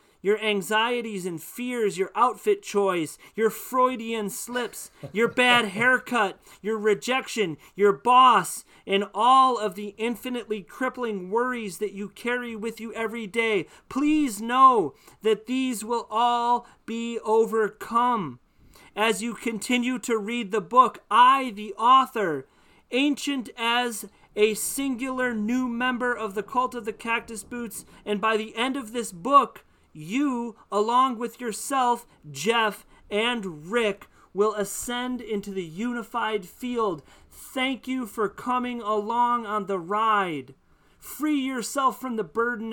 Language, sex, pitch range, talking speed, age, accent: English, male, 210-245 Hz, 135 wpm, 40-59, American